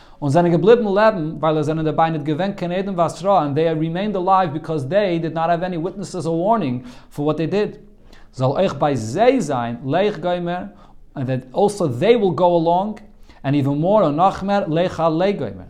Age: 40-59